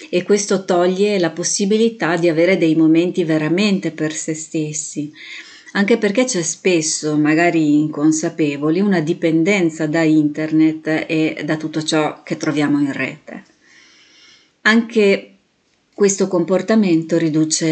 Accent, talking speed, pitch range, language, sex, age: native, 120 wpm, 155-185 Hz, Italian, female, 30-49